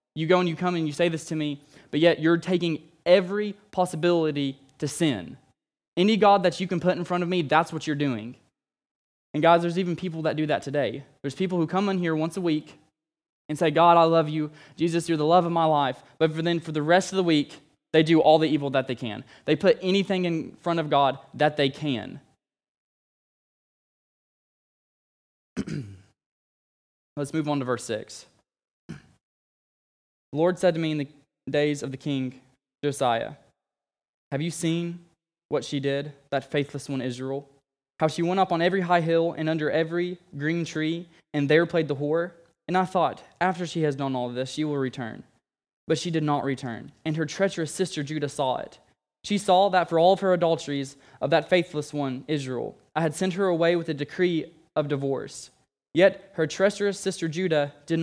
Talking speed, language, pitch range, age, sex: 195 wpm, English, 145-175 Hz, 20-39, male